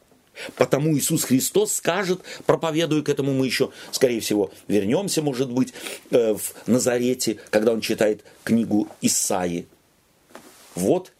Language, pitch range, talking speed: Russian, 125-205 Hz, 120 wpm